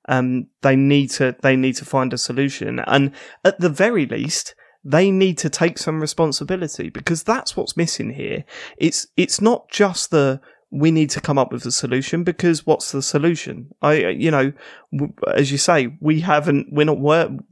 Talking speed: 190 wpm